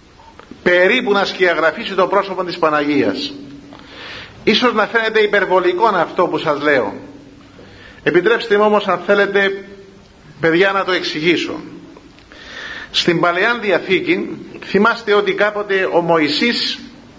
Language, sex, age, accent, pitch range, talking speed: Greek, male, 50-69, native, 175-230 Hz, 110 wpm